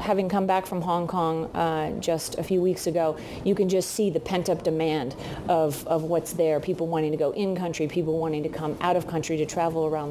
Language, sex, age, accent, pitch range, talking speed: English, female, 40-59, American, 165-190 Hz, 225 wpm